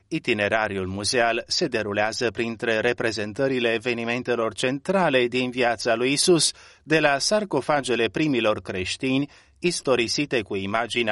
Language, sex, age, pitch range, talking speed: Romanian, male, 30-49, 110-135 Hz, 110 wpm